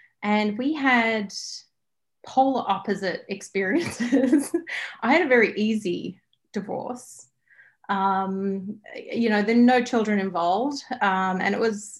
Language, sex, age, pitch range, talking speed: English, female, 30-49, 195-250 Hz, 120 wpm